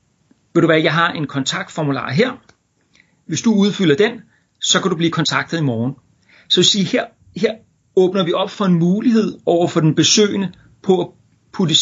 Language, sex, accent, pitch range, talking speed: Danish, male, native, 145-185 Hz, 195 wpm